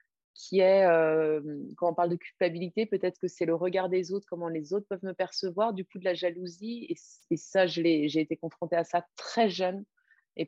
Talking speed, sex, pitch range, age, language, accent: 225 wpm, female, 170-210 Hz, 30-49, French, French